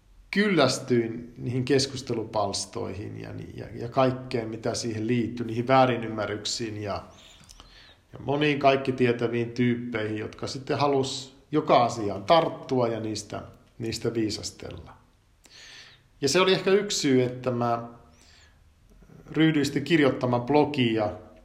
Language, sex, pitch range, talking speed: Finnish, male, 110-145 Hz, 100 wpm